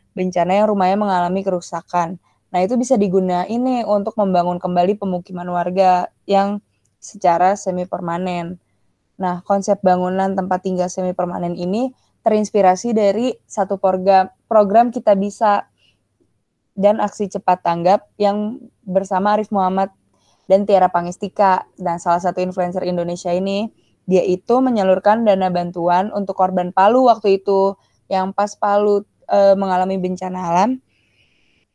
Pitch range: 185-210 Hz